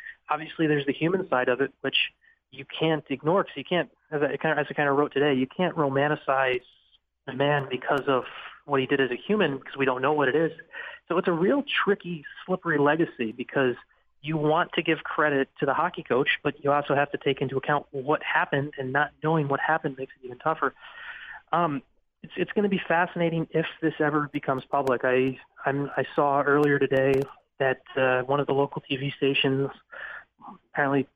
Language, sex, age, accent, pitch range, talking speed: English, male, 30-49, American, 135-155 Hz, 205 wpm